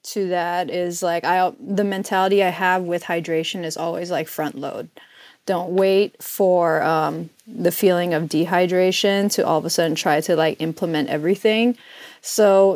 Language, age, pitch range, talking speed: English, 20-39, 165-195 Hz, 165 wpm